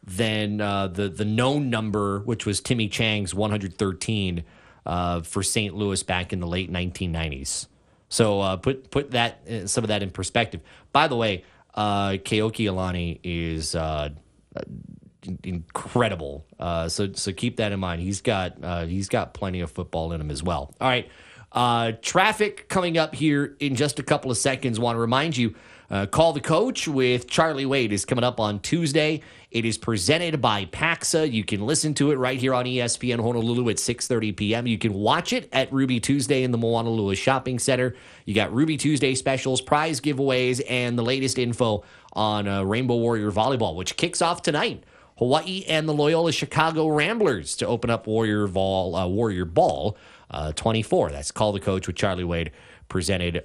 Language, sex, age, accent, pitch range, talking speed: English, male, 30-49, American, 95-135 Hz, 180 wpm